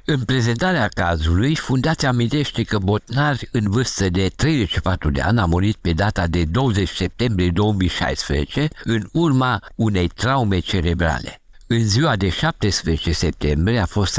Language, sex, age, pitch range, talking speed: Romanian, male, 60-79, 85-115 Hz, 140 wpm